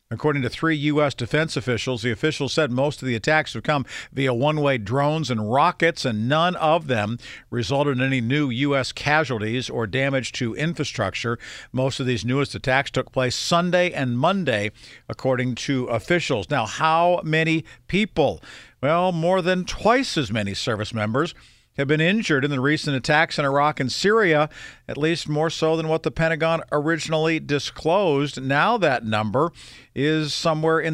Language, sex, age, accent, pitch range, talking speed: English, male, 50-69, American, 130-165 Hz, 165 wpm